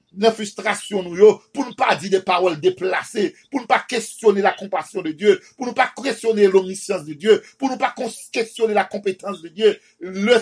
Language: French